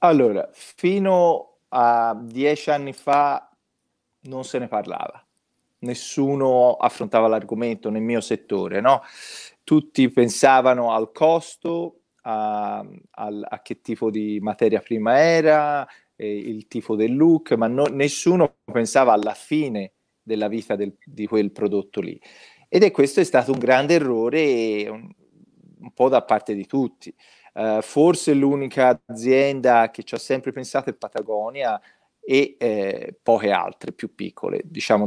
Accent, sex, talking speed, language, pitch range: native, male, 135 wpm, Italian, 110-145 Hz